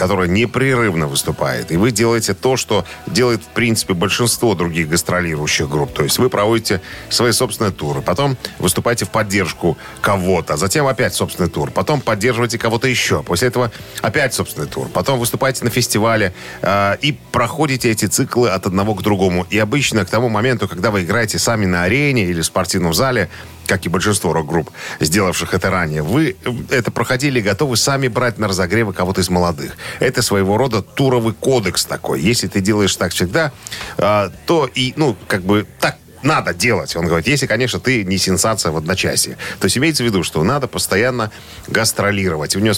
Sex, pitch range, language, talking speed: male, 90-120 Hz, Russian, 175 wpm